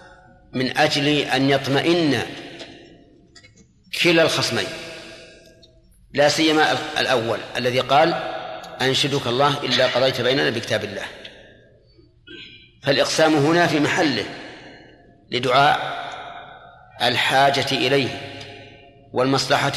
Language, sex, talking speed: Arabic, male, 80 wpm